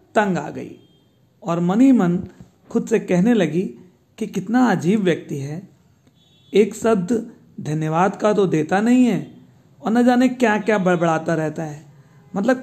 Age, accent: 50-69, native